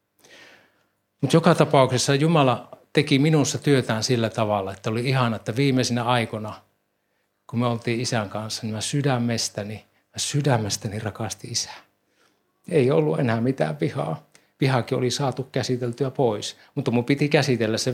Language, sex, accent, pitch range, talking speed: Finnish, male, native, 105-125 Hz, 135 wpm